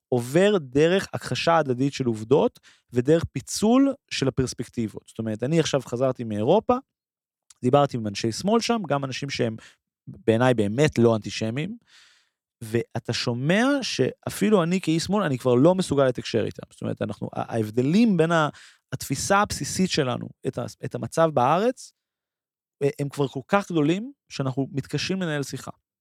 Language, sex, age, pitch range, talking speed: Hebrew, male, 30-49, 115-165 Hz, 140 wpm